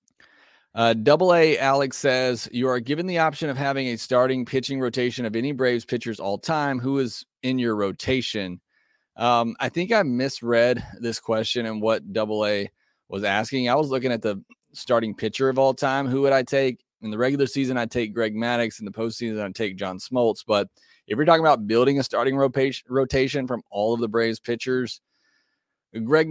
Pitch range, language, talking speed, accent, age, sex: 110-135 Hz, English, 195 wpm, American, 30-49, male